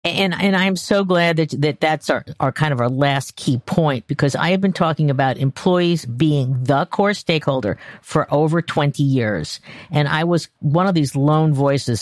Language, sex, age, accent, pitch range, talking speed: English, female, 50-69, American, 140-180 Hz, 195 wpm